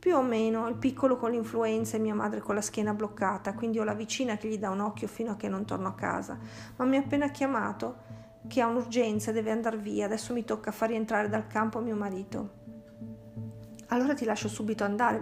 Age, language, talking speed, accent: 50-69, Italian, 215 wpm, native